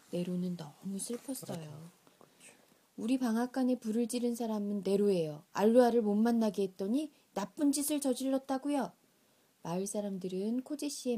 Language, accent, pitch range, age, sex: Korean, native, 195-275 Hz, 20-39, female